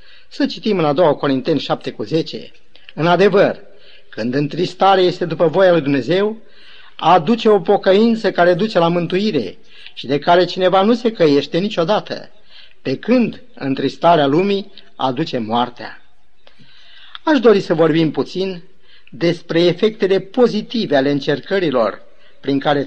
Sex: male